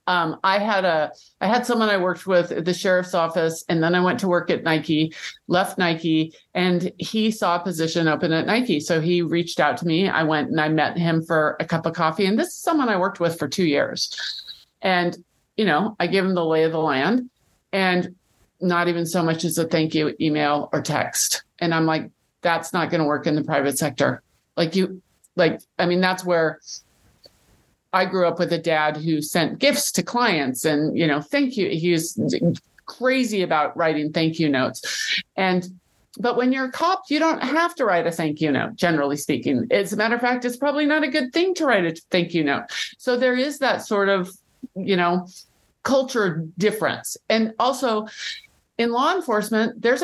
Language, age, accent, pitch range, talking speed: English, 50-69, American, 165-220 Hz, 210 wpm